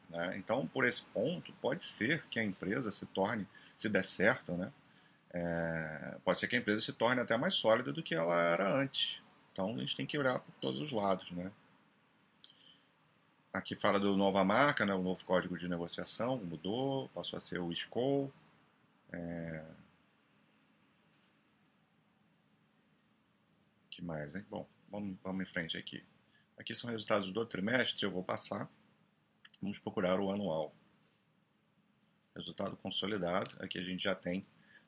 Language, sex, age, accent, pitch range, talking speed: Portuguese, male, 40-59, Brazilian, 90-115 Hz, 155 wpm